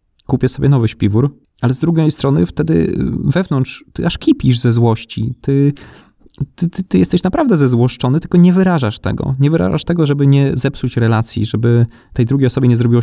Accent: native